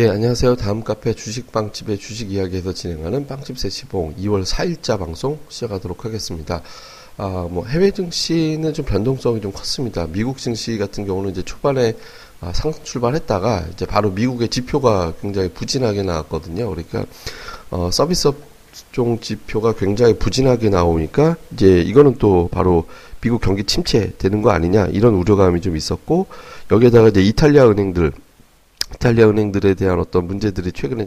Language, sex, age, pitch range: Korean, male, 30-49, 95-120 Hz